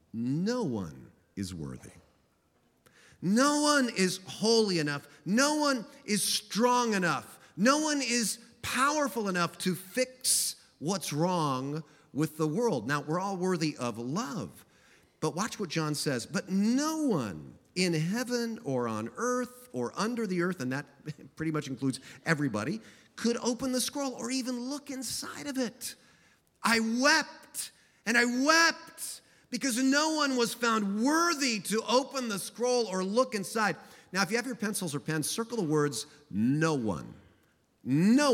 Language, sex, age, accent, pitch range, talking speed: English, male, 40-59, American, 145-240 Hz, 150 wpm